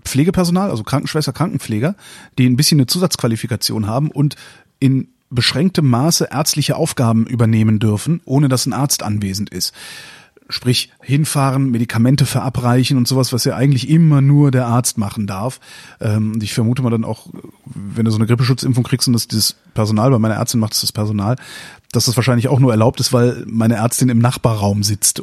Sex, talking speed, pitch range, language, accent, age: male, 185 wpm, 115-140 Hz, German, German, 30-49